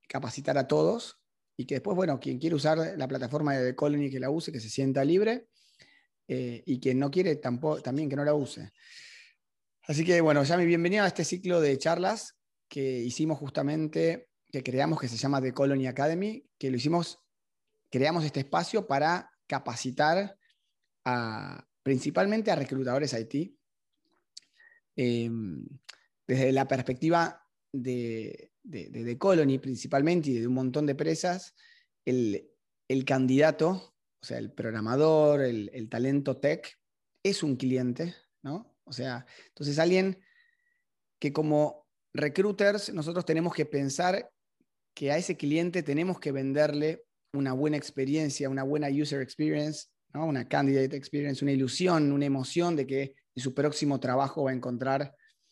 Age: 30-49